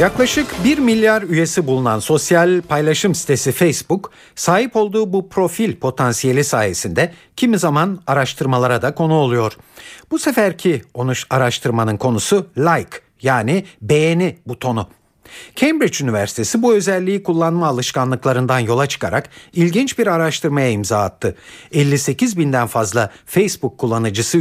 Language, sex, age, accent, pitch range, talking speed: Turkish, male, 50-69, native, 125-180 Hz, 115 wpm